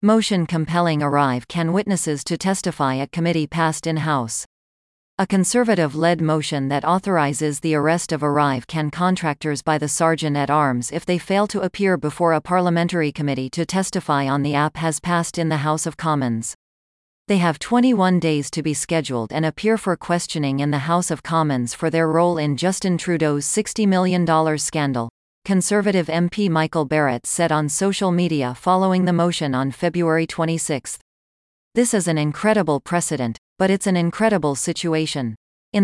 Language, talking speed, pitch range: English, 155 wpm, 150-180 Hz